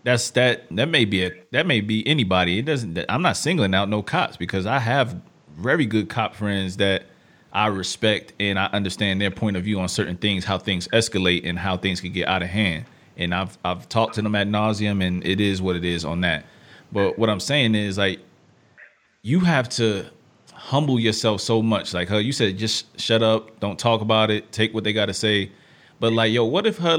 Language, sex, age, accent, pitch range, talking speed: English, male, 30-49, American, 100-125 Hz, 225 wpm